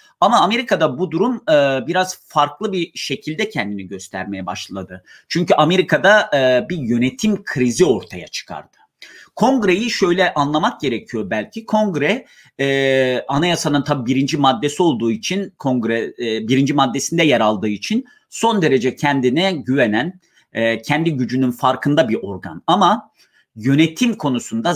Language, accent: Turkish, native